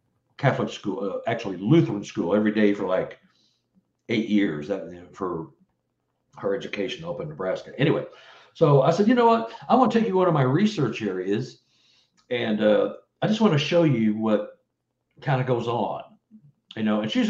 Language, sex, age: English, male, 60-79